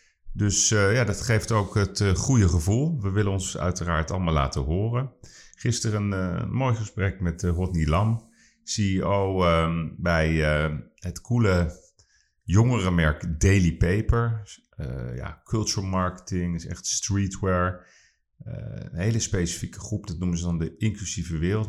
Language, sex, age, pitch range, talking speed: Dutch, male, 40-59, 85-100 Hz, 145 wpm